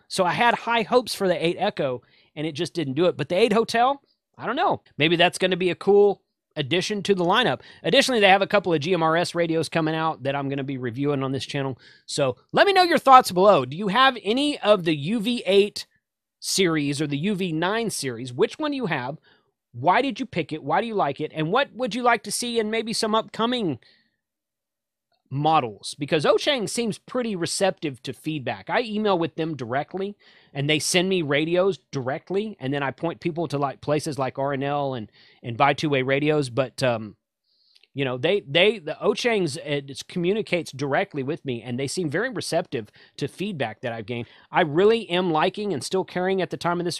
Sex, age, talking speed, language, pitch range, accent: male, 30-49, 215 wpm, English, 140-200 Hz, American